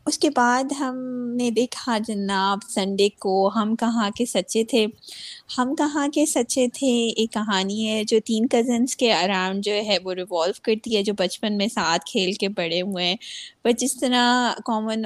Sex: female